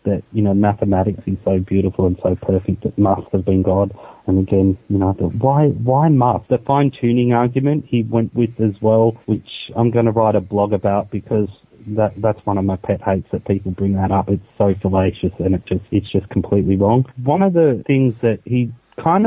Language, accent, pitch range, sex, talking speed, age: English, Australian, 95-115 Hz, male, 220 wpm, 30-49